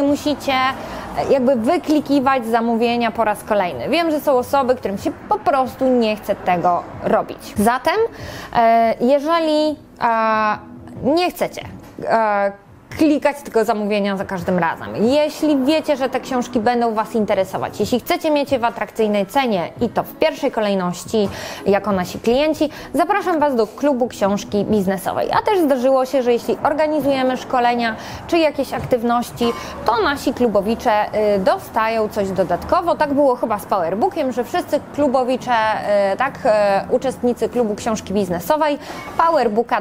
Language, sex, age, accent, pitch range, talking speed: Polish, female, 20-39, native, 205-280 Hz, 135 wpm